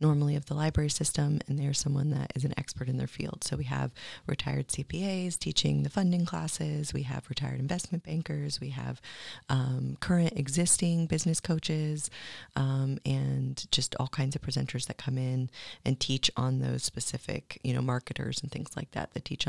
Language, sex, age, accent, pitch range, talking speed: English, female, 30-49, American, 135-155 Hz, 185 wpm